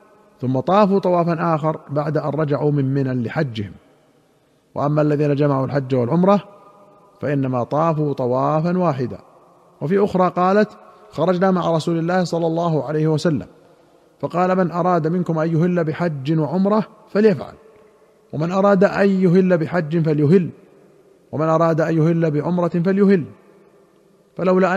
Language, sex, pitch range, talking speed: Arabic, male, 145-185 Hz, 125 wpm